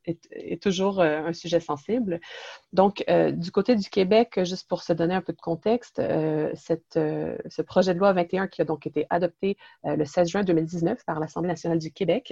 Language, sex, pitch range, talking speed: French, female, 165-200 Hz, 210 wpm